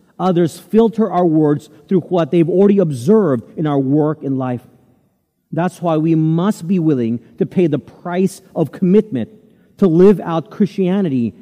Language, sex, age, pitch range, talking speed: English, male, 40-59, 140-200 Hz, 160 wpm